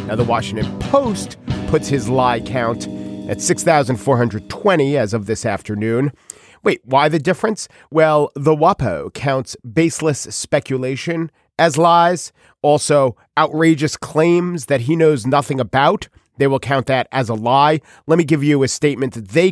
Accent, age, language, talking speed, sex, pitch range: American, 40-59, English, 150 wpm, male, 115-155 Hz